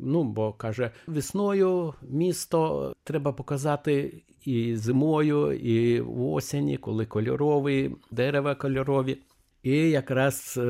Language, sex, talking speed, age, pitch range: Ukrainian, male, 95 wpm, 60-79, 110-140 Hz